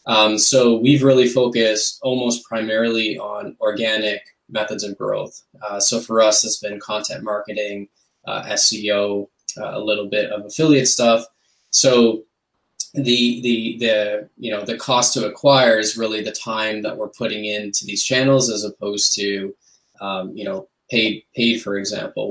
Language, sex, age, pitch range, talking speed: English, male, 20-39, 105-125 Hz, 160 wpm